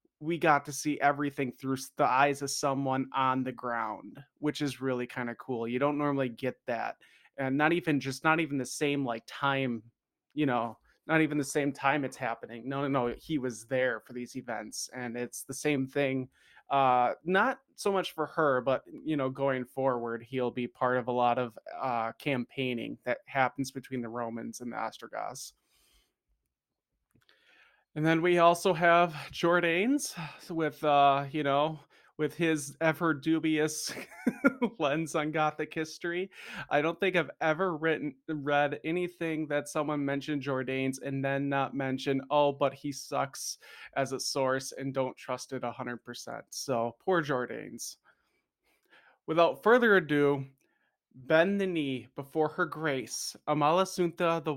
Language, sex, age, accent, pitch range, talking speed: English, male, 20-39, American, 130-160 Hz, 160 wpm